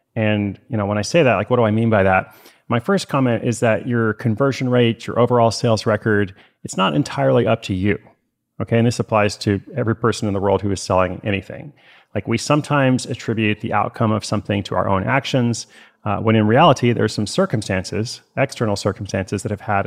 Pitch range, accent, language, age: 100-120 Hz, American, English, 30-49